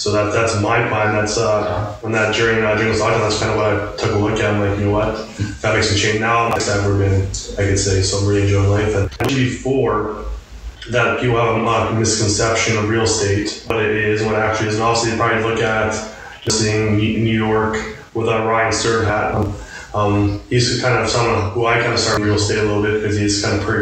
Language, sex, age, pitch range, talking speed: English, male, 20-39, 105-115 Hz, 240 wpm